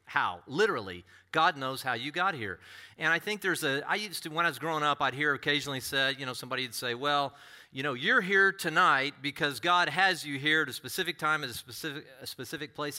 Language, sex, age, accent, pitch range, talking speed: English, male, 40-59, American, 130-180 Hz, 235 wpm